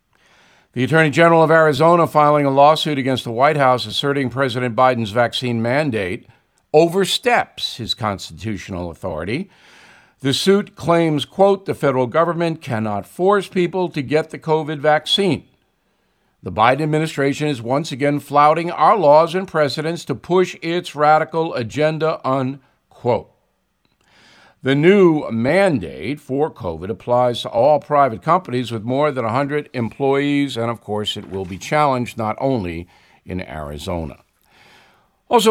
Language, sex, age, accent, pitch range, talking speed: English, male, 50-69, American, 130-170 Hz, 135 wpm